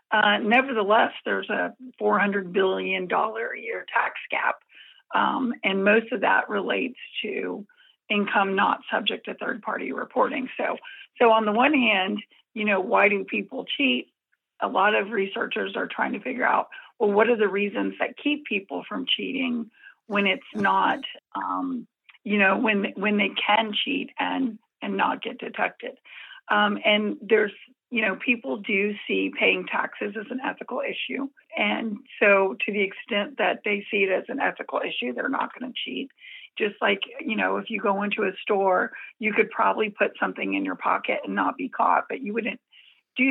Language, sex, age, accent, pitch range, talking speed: English, female, 50-69, American, 205-255 Hz, 180 wpm